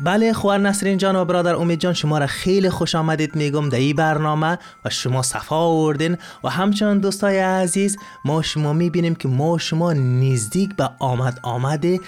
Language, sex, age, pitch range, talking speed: Persian, male, 30-49, 125-175 Hz, 170 wpm